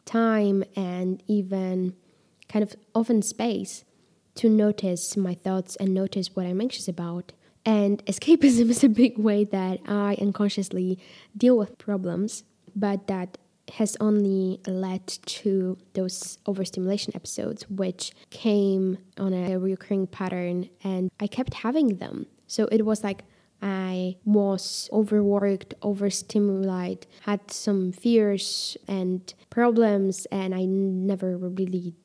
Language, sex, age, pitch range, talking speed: English, female, 10-29, 190-210 Hz, 125 wpm